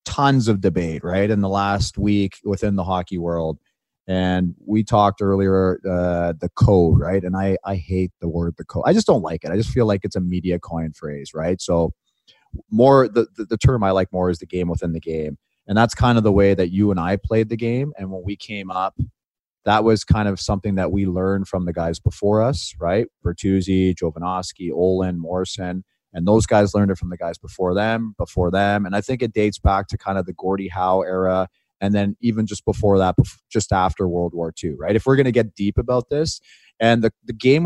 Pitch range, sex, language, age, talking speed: 90-110 Hz, male, English, 30-49, 230 wpm